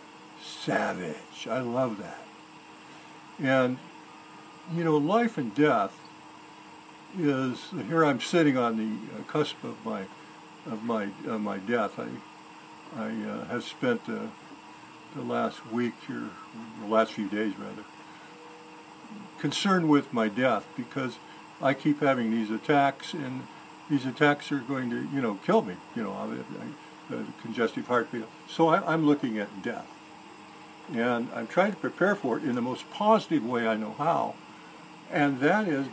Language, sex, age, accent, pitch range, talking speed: English, male, 60-79, American, 120-165 Hz, 145 wpm